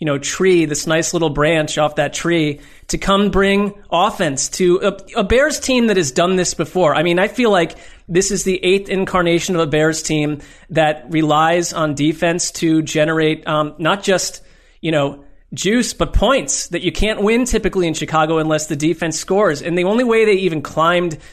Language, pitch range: English, 160-200 Hz